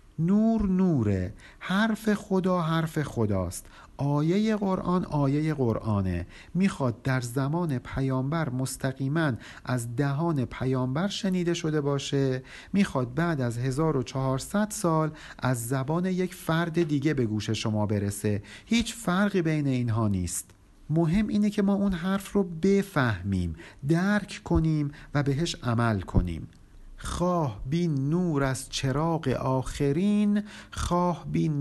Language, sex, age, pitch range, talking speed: Persian, male, 50-69, 115-170 Hz, 120 wpm